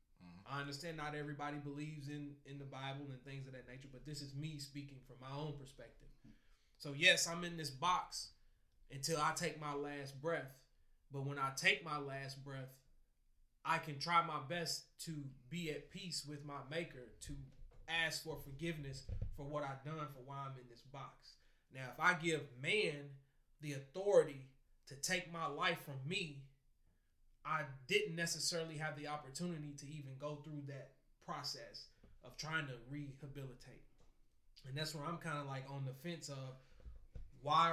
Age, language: 20-39, English